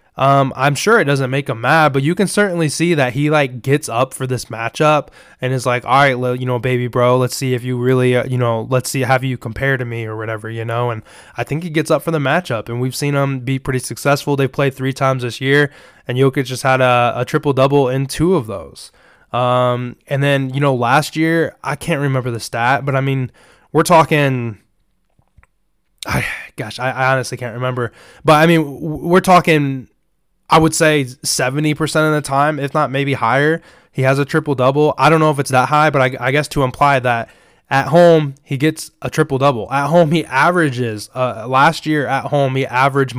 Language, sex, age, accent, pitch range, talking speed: English, male, 20-39, American, 125-150 Hz, 220 wpm